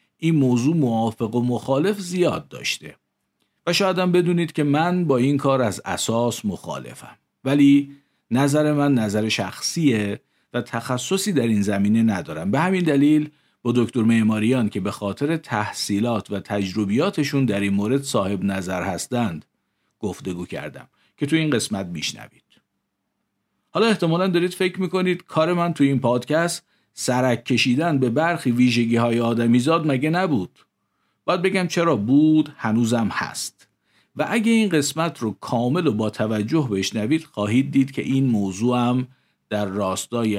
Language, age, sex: Persian, 50-69, male